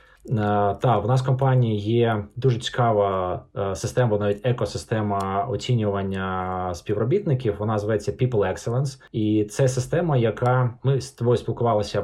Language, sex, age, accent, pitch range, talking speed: Ukrainian, male, 20-39, native, 105-130 Hz, 130 wpm